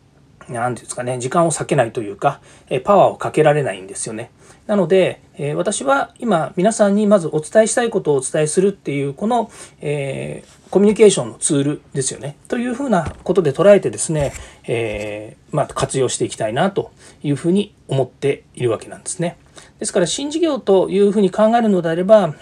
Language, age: Japanese, 40-59